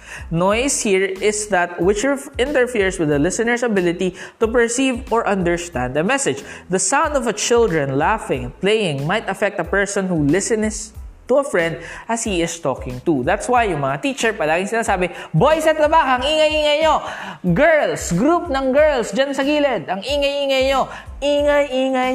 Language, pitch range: Filipino, 165-245 Hz